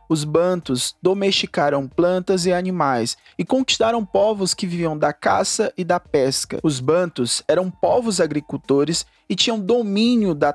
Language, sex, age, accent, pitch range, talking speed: Portuguese, male, 20-39, Brazilian, 160-215 Hz, 140 wpm